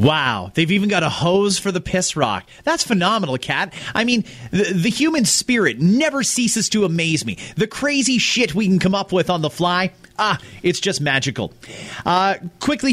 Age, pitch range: 30-49, 160-215 Hz